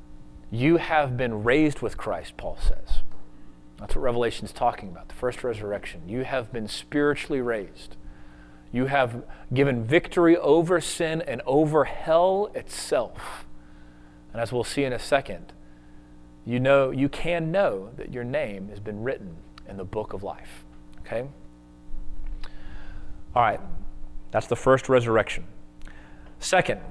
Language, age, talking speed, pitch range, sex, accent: English, 30-49, 140 wpm, 95-150 Hz, male, American